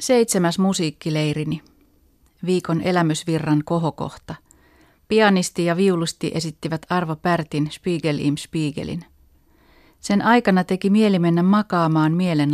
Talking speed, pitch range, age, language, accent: 95 wpm, 150-195 Hz, 30-49, Finnish, native